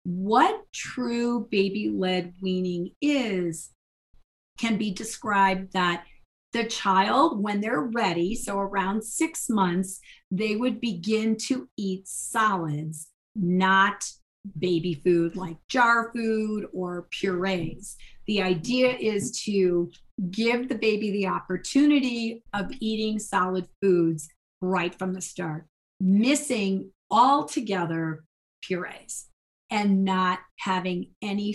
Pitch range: 185-235 Hz